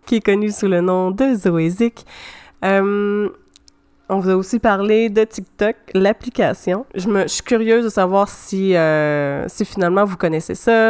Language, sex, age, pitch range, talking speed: French, female, 30-49, 180-215 Hz, 170 wpm